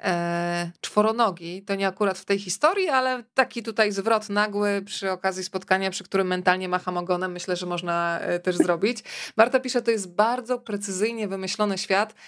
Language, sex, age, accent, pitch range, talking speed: Polish, female, 20-39, native, 190-230 Hz, 160 wpm